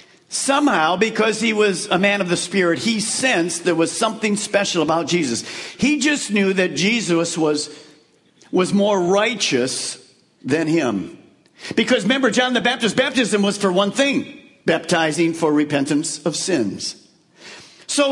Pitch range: 175-250 Hz